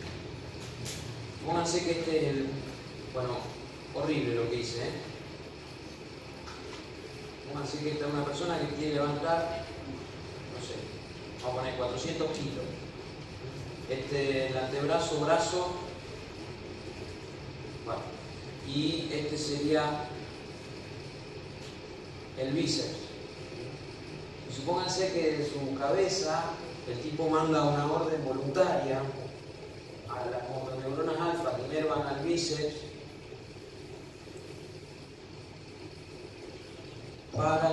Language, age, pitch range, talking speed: Spanish, 40-59, 130-160 Hz, 90 wpm